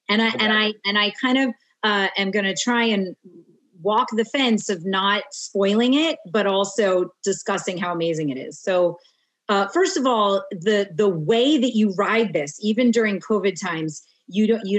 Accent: American